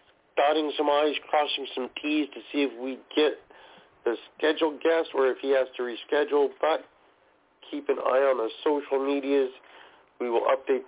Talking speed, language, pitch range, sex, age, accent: 170 wpm, English, 130-175 Hz, male, 40-59, American